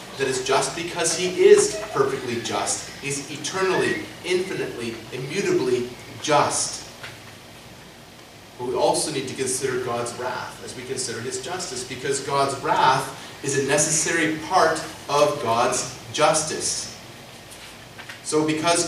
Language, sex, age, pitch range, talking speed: English, male, 30-49, 130-180 Hz, 120 wpm